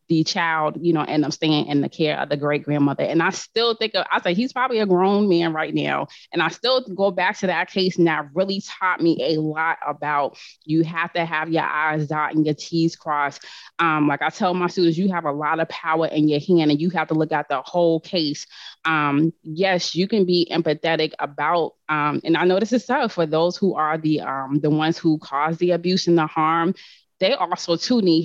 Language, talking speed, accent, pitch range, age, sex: English, 240 wpm, American, 155-180 Hz, 20-39, female